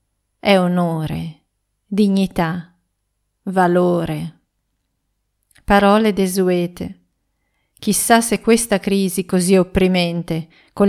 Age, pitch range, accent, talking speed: 40-59, 175-205 Hz, native, 70 wpm